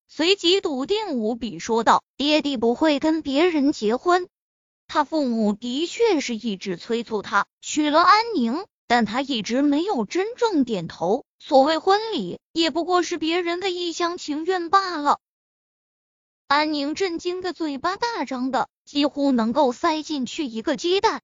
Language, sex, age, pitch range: Chinese, female, 20-39, 245-355 Hz